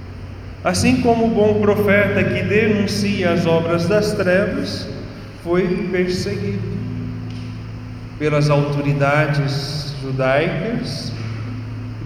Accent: Brazilian